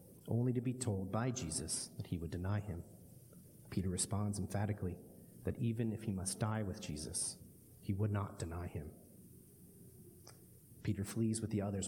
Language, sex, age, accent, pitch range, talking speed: English, male, 30-49, American, 90-115 Hz, 160 wpm